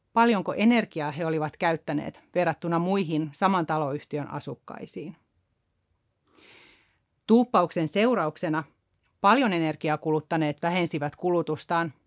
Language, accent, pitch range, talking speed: Finnish, native, 155-190 Hz, 85 wpm